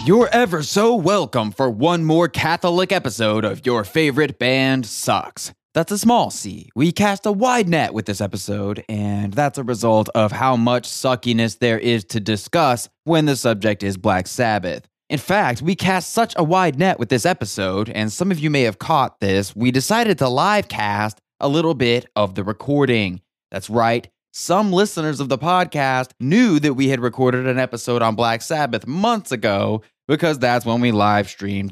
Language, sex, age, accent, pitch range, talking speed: English, male, 20-39, American, 110-150 Hz, 185 wpm